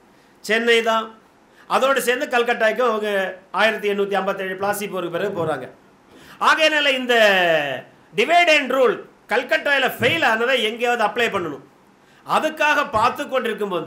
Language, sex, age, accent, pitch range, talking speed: Tamil, male, 50-69, native, 200-265 Hz, 110 wpm